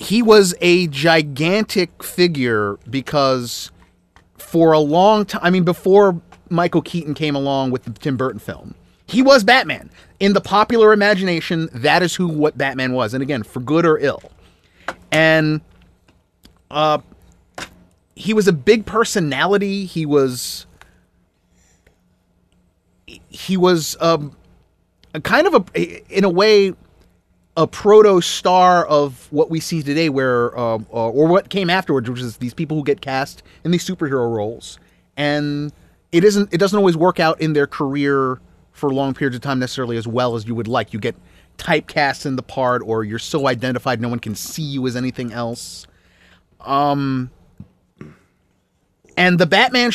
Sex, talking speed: male, 155 wpm